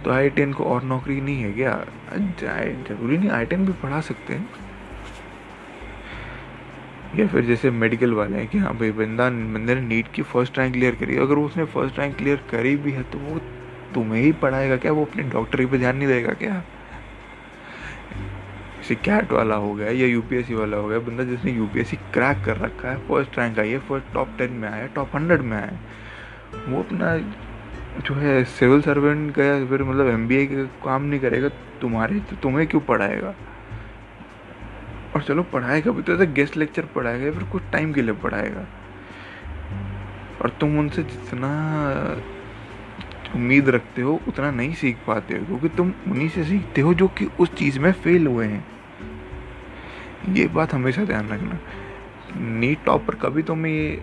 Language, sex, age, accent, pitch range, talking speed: English, male, 20-39, Indian, 110-145 Hz, 115 wpm